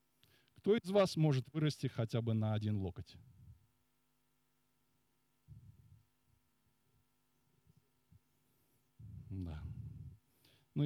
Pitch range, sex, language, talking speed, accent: 100-130 Hz, male, Russian, 65 wpm, native